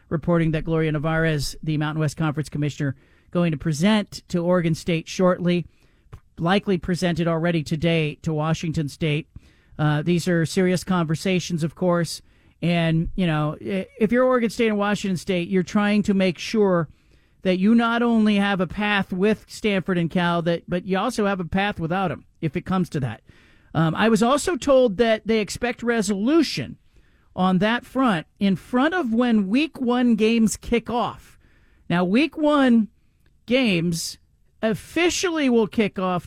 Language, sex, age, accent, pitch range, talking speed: English, male, 40-59, American, 165-230 Hz, 165 wpm